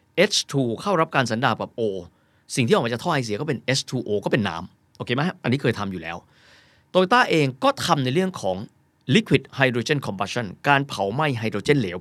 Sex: male